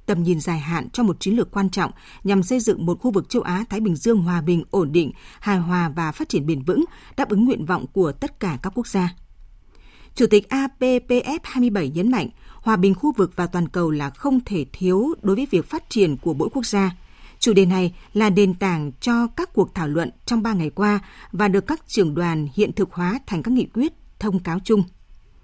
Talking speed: 225 wpm